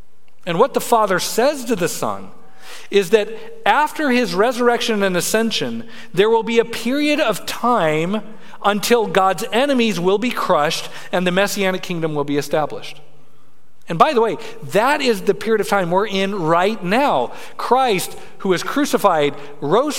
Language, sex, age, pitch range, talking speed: English, male, 40-59, 185-240 Hz, 160 wpm